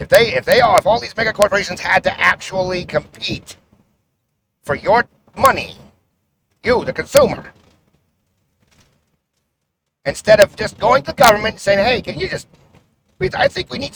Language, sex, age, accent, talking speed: English, male, 50-69, American, 160 wpm